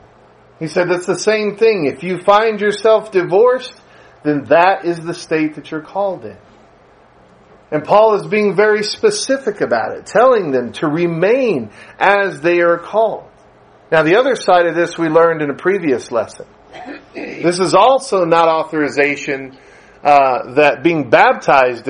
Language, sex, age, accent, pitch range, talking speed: English, male, 40-59, American, 155-215 Hz, 155 wpm